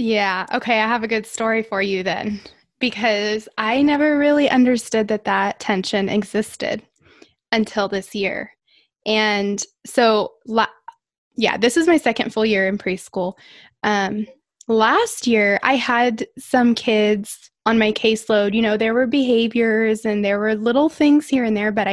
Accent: American